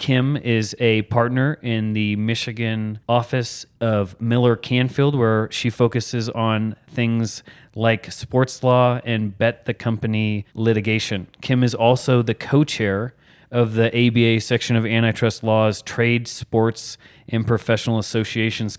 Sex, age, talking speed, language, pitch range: male, 30-49, 130 wpm, English, 115-125 Hz